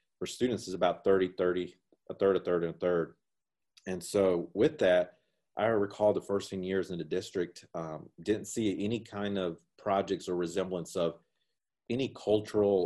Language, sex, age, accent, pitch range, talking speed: English, male, 30-49, American, 90-105 Hz, 175 wpm